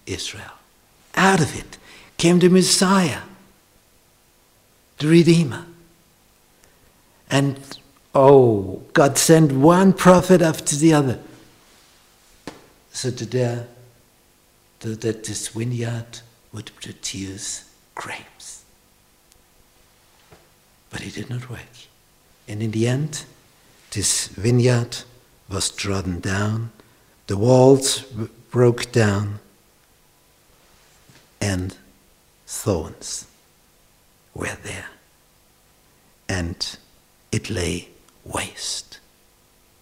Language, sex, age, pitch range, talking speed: English, male, 60-79, 110-165 Hz, 75 wpm